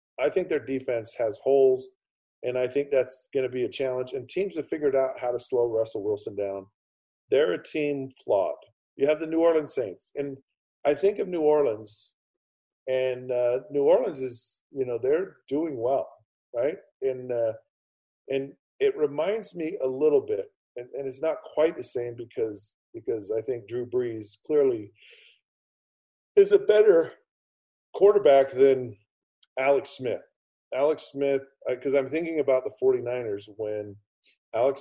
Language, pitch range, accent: English, 120-160 Hz, American